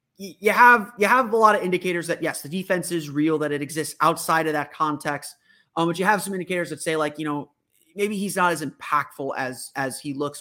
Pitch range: 145-180 Hz